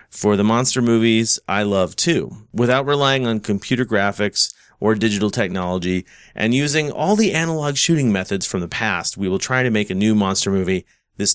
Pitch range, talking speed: 105-135 Hz, 185 wpm